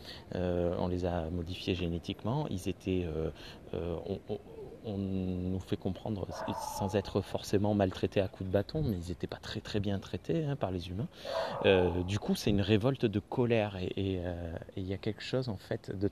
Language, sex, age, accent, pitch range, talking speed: French, male, 30-49, French, 90-110 Hz, 205 wpm